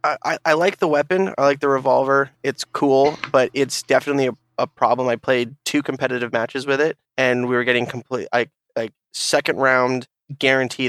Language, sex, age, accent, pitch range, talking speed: English, male, 20-39, American, 120-135 Hz, 180 wpm